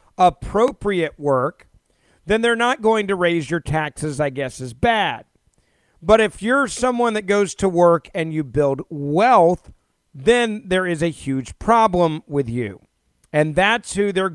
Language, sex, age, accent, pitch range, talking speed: English, male, 40-59, American, 145-190 Hz, 160 wpm